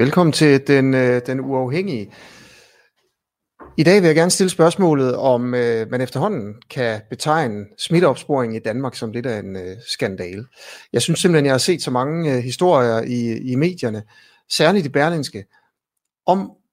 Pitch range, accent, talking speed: 120-160 Hz, native, 160 wpm